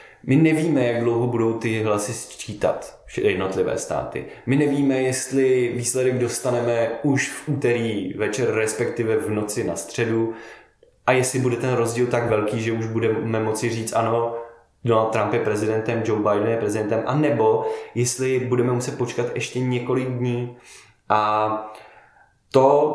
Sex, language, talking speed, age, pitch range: male, Czech, 145 wpm, 20-39, 115-130 Hz